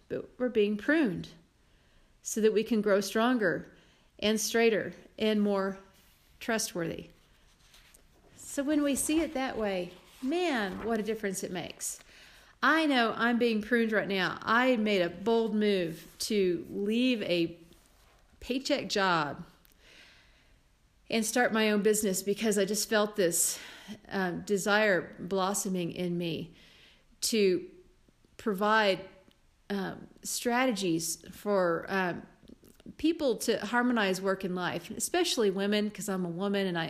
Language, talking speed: English, 130 wpm